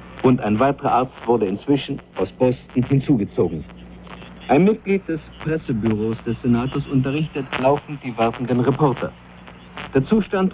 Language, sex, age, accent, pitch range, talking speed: German, male, 50-69, German, 115-150 Hz, 125 wpm